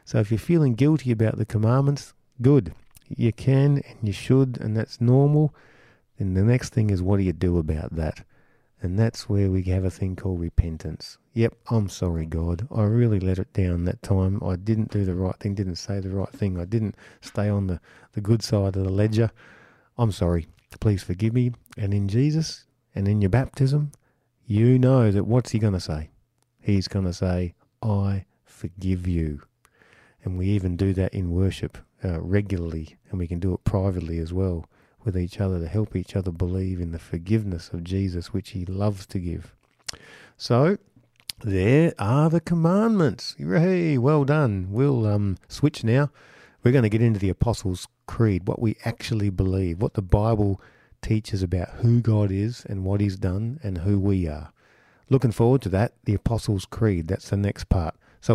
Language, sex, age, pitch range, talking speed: English, male, 50-69, 95-120 Hz, 190 wpm